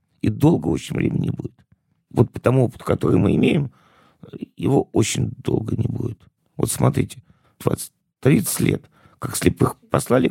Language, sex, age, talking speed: Russian, male, 50-69, 145 wpm